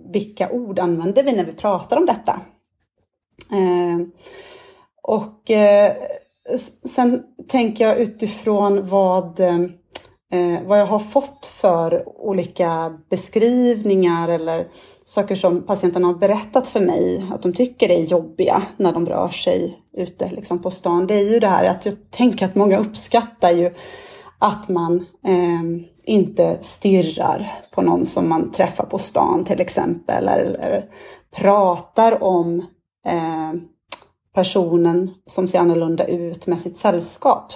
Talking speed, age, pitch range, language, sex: 125 wpm, 30-49, 175-220 Hz, English, female